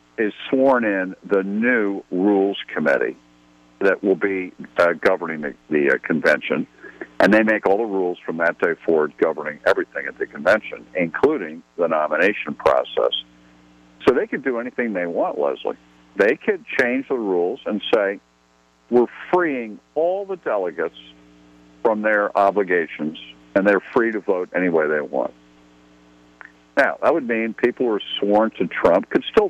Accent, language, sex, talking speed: American, English, male, 160 wpm